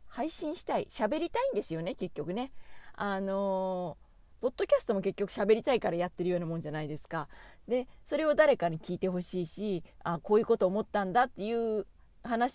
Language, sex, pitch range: Japanese, female, 180-270 Hz